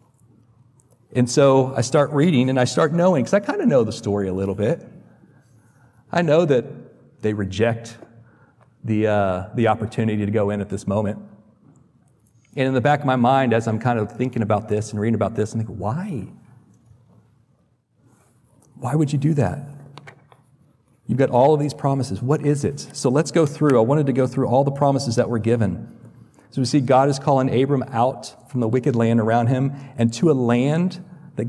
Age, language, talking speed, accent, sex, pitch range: 40-59, English, 195 wpm, American, male, 115-135 Hz